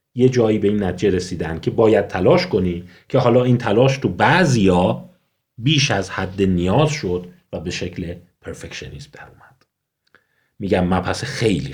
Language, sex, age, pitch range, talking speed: Persian, male, 40-59, 95-130 Hz, 150 wpm